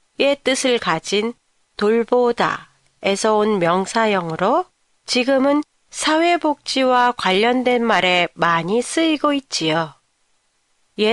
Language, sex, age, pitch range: Japanese, female, 40-59, 205-270 Hz